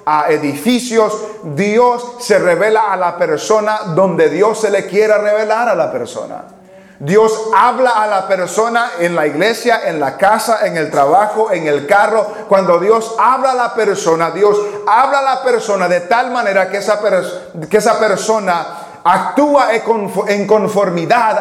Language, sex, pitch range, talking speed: English, male, 165-230 Hz, 155 wpm